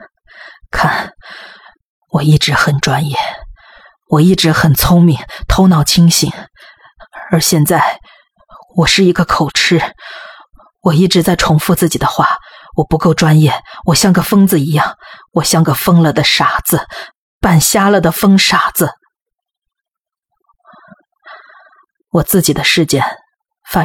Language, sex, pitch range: Chinese, female, 150-190 Hz